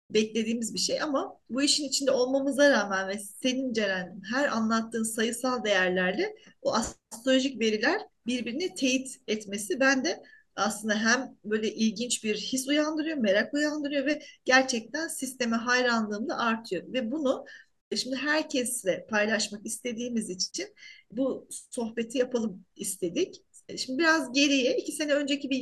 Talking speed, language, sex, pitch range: 130 wpm, Turkish, female, 225-285 Hz